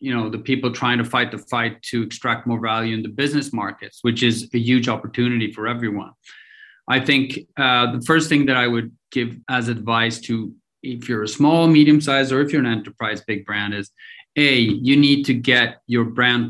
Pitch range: 115-135 Hz